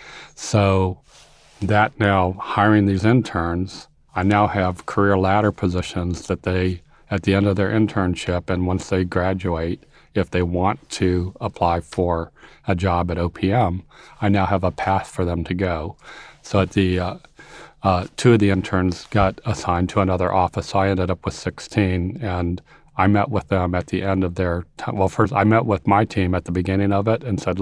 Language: English